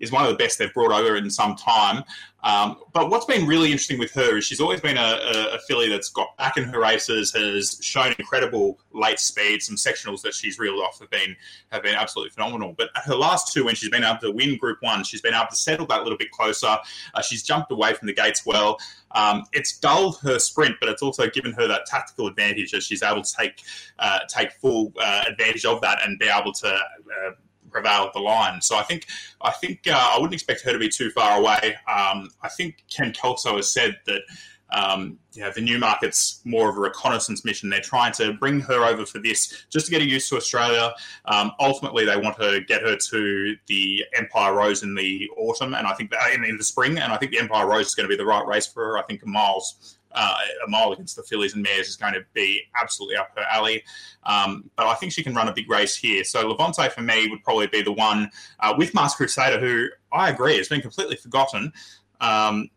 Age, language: 20-39, English